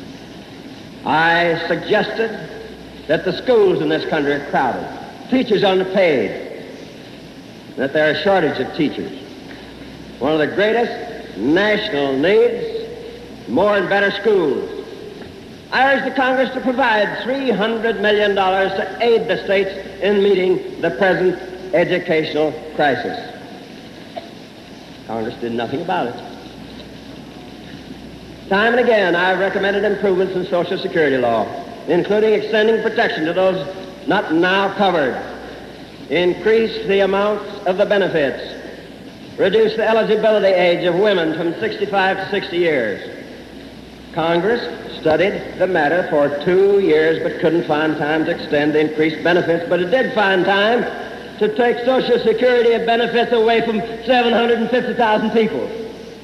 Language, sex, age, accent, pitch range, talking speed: English, male, 60-79, American, 180-230 Hz, 125 wpm